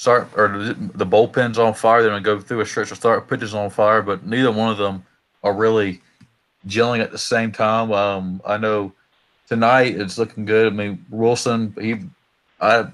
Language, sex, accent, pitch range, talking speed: English, male, American, 100-115 Hz, 190 wpm